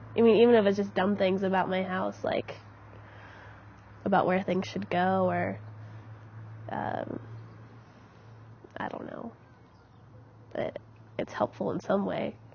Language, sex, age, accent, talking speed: English, female, 10-29, American, 135 wpm